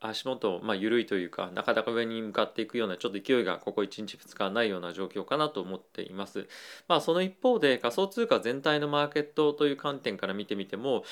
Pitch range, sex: 105-150 Hz, male